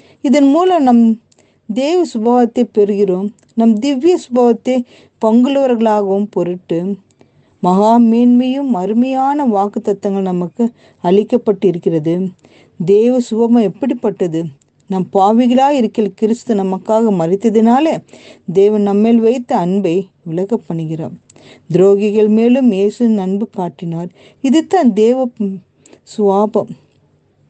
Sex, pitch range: female, 190-235 Hz